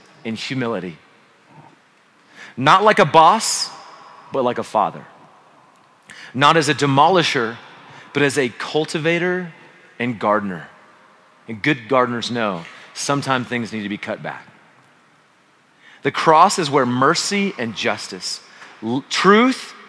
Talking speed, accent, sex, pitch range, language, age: 120 wpm, American, male, 120-165 Hz, English, 30-49